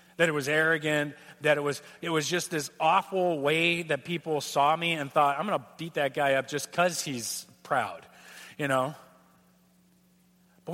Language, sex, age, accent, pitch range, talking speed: English, male, 40-59, American, 160-230 Hz, 185 wpm